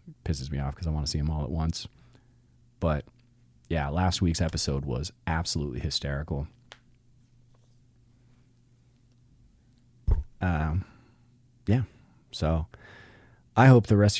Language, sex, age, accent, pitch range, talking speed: English, male, 30-49, American, 80-120 Hz, 115 wpm